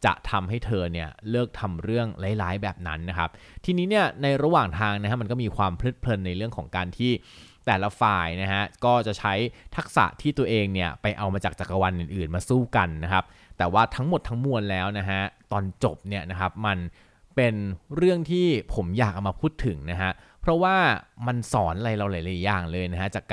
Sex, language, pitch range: male, Thai, 95-120 Hz